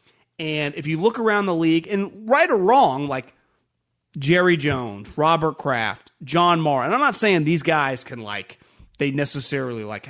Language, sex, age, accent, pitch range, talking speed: English, male, 30-49, American, 130-200 Hz, 170 wpm